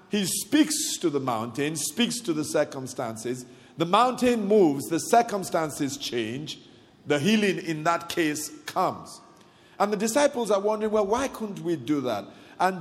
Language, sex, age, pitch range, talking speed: English, male, 50-69, 160-255 Hz, 155 wpm